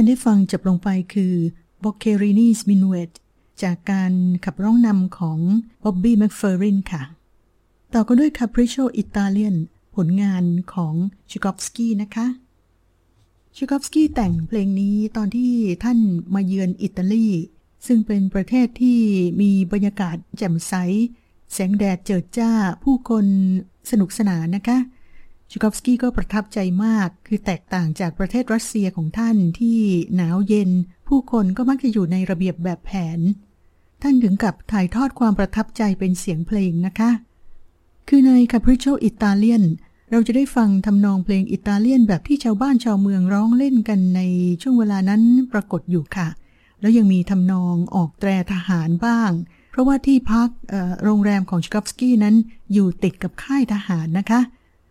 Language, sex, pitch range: English, female, 185-230 Hz